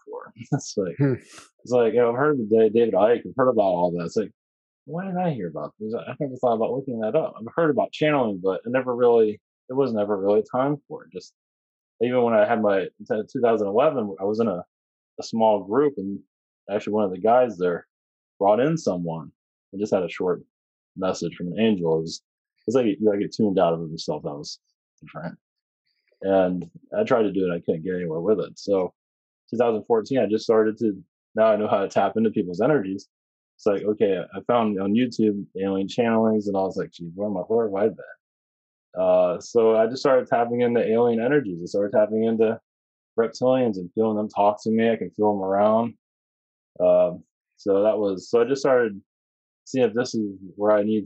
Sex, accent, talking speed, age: male, American, 215 wpm, 30-49